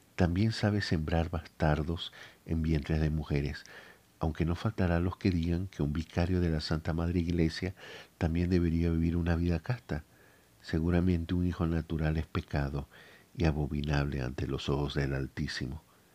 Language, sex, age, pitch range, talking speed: Spanish, male, 50-69, 80-95 Hz, 155 wpm